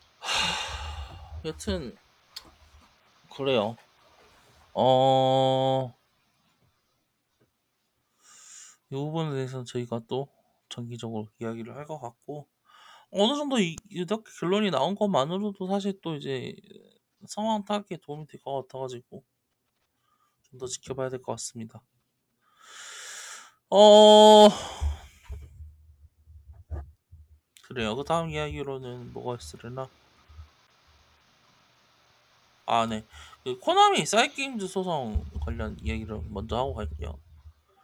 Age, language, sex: 20-39, Korean, male